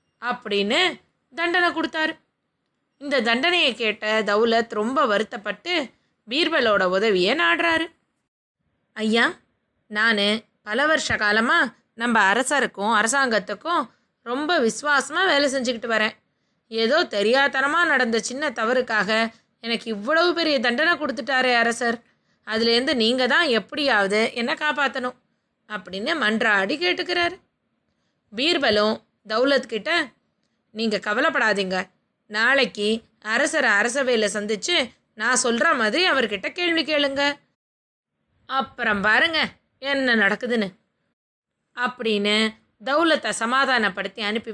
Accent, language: native, Tamil